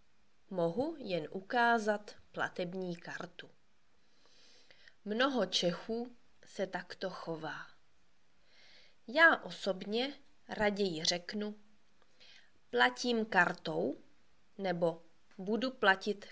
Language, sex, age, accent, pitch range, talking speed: Czech, female, 20-39, native, 180-235 Hz, 70 wpm